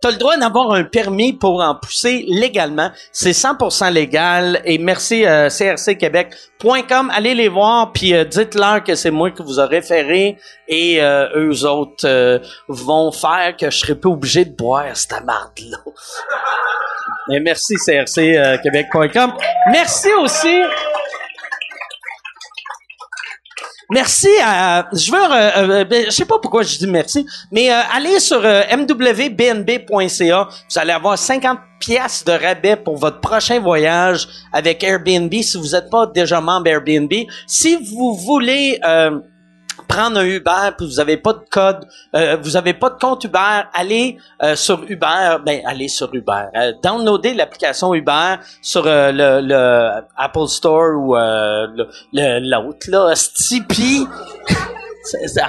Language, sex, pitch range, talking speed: French, male, 160-245 Hz, 145 wpm